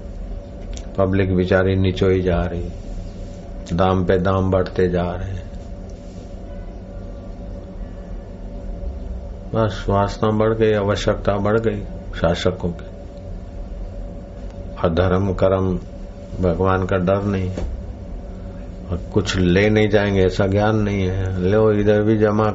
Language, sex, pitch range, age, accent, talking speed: Hindi, male, 95-100 Hz, 50-69, native, 110 wpm